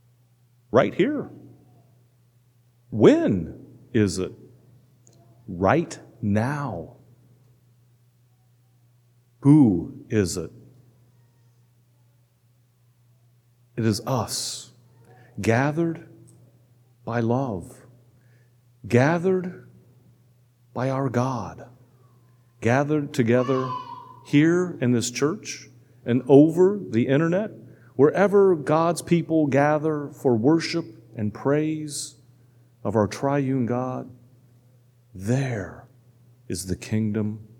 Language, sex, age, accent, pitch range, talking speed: English, male, 50-69, American, 120-135 Hz, 75 wpm